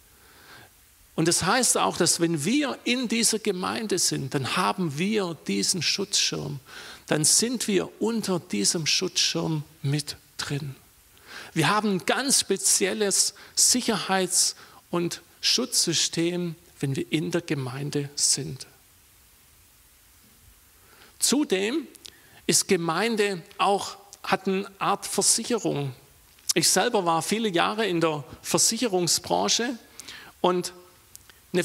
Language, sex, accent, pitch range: German, male, German, 145-200 Hz